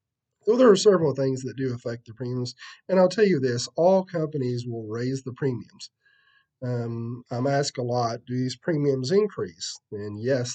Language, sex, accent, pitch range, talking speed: English, male, American, 120-145 Hz, 190 wpm